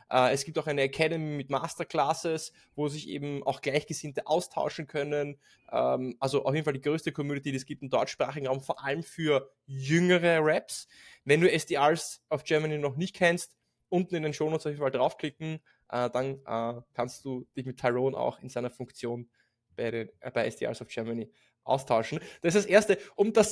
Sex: male